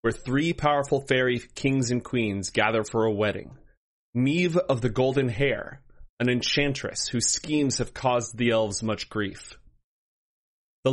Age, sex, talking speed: 30-49, male, 150 wpm